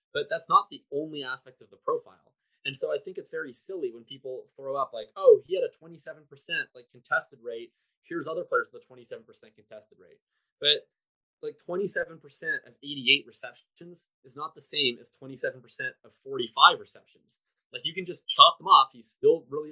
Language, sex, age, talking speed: English, male, 20-39, 190 wpm